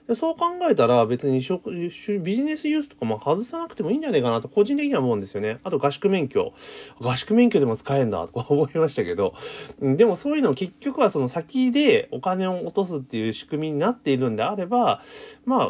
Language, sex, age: Japanese, male, 30-49